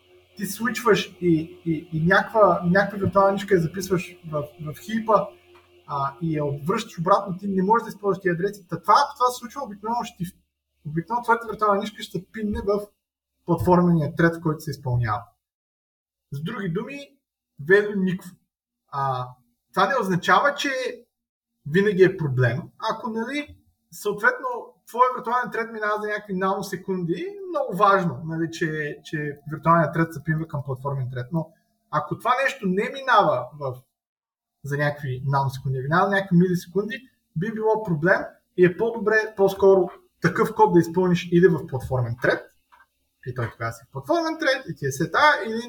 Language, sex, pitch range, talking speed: Bulgarian, male, 150-215 Hz, 155 wpm